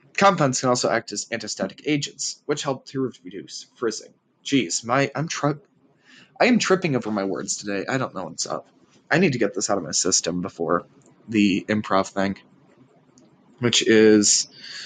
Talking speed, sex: 175 wpm, male